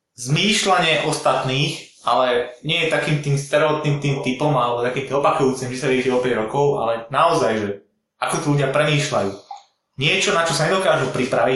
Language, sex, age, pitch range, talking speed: Slovak, male, 20-39, 130-155 Hz, 155 wpm